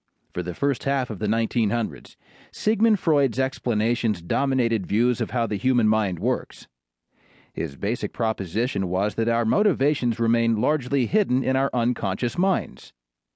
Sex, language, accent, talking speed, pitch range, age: male, English, American, 145 wpm, 105-145 Hz, 40-59